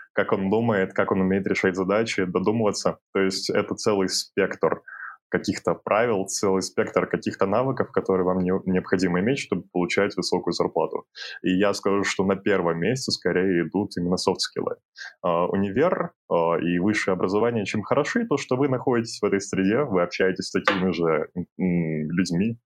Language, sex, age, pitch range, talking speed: Russian, male, 20-39, 90-105 Hz, 155 wpm